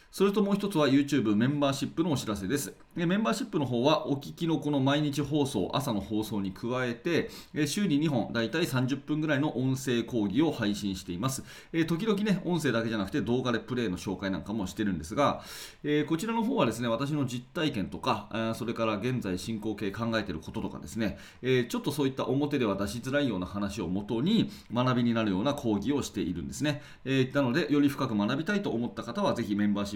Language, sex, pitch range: Japanese, male, 105-145 Hz